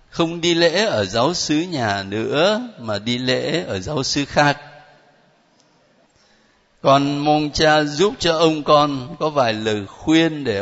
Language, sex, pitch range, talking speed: Vietnamese, male, 130-205 Hz, 155 wpm